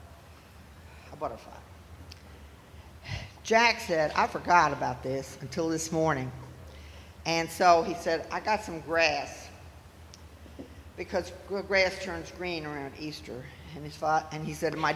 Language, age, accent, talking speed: English, 50-69, American, 120 wpm